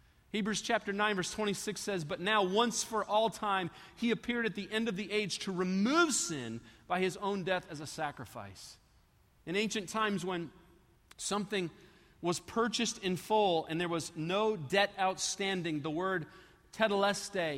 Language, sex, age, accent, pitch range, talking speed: English, male, 40-59, American, 170-215 Hz, 165 wpm